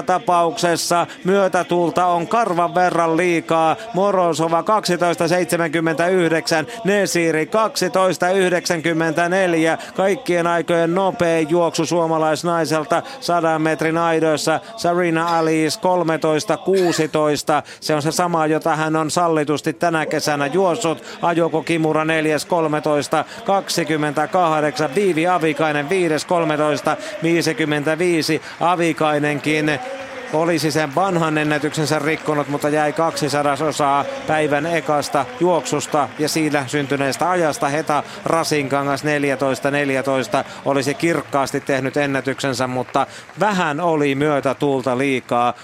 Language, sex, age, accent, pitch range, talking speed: Finnish, male, 30-49, native, 145-170 Hz, 90 wpm